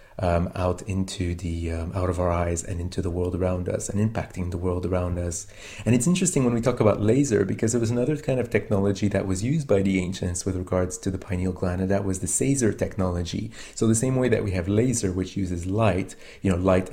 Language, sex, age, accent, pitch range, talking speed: English, male, 30-49, Canadian, 95-110 Hz, 240 wpm